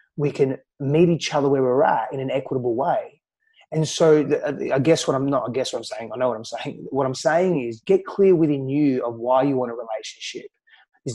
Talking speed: 235 wpm